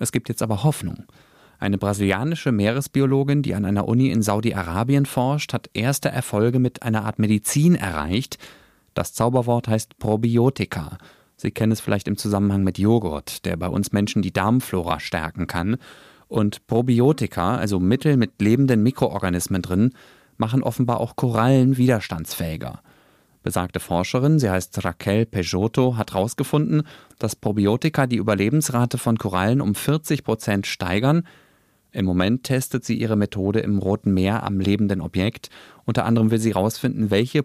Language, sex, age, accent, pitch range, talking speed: German, male, 30-49, German, 100-130 Hz, 145 wpm